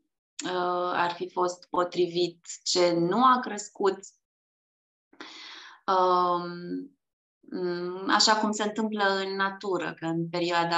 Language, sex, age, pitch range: Romanian, female, 20-39, 170-195 Hz